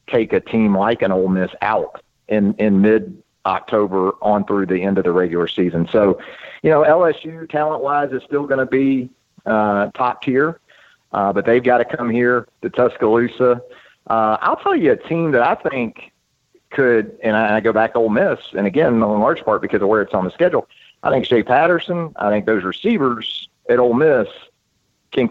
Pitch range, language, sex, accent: 100-140 Hz, English, male, American